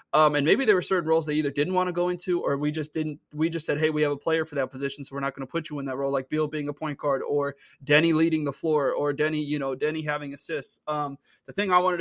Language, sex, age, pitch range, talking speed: English, male, 20-39, 140-160 Hz, 310 wpm